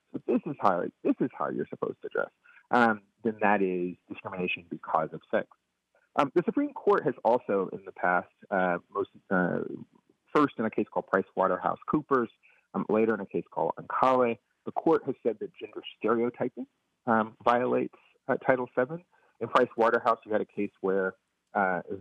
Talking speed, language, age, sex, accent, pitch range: 185 wpm, English, 30-49, male, American, 100-140 Hz